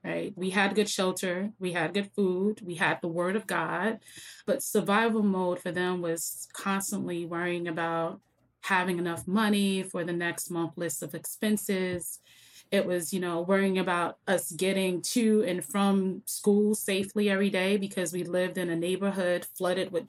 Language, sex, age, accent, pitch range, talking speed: English, female, 20-39, American, 175-205 Hz, 170 wpm